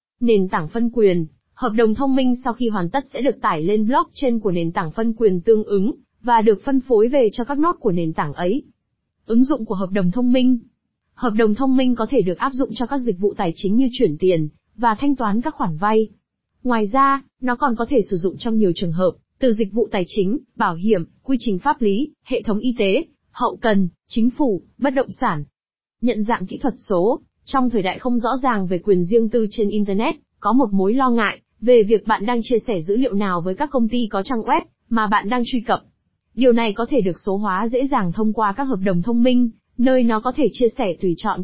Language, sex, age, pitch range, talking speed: Vietnamese, female, 20-39, 205-255 Hz, 245 wpm